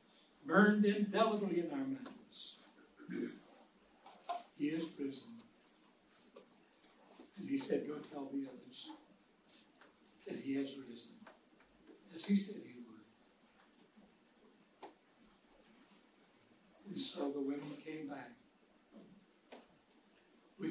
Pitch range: 155-210 Hz